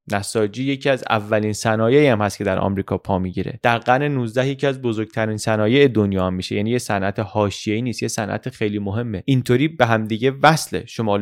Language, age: Persian, 30-49